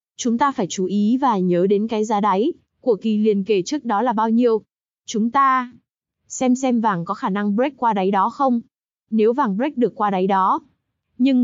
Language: Vietnamese